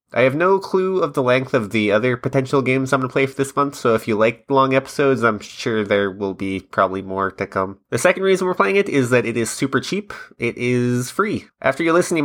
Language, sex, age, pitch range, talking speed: English, male, 20-39, 115-140 Hz, 260 wpm